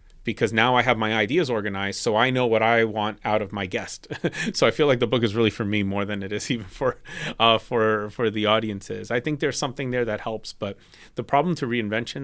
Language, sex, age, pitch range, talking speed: English, male, 30-49, 100-115 Hz, 245 wpm